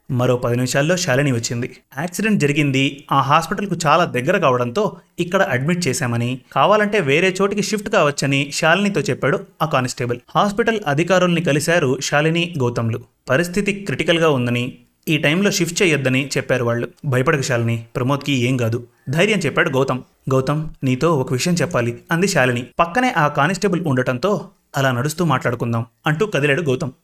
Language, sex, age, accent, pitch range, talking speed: Telugu, male, 30-49, native, 130-175 Hz, 140 wpm